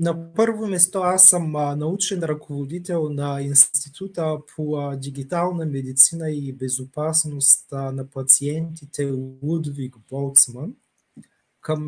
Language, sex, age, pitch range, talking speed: Bulgarian, male, 30-49, 140-170 Hz, 95 wpm